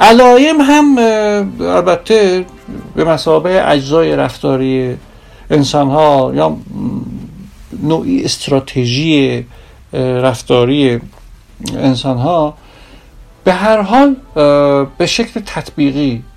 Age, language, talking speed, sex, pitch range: 60-79, Persian, 70 wpm, male, 120-160 Hz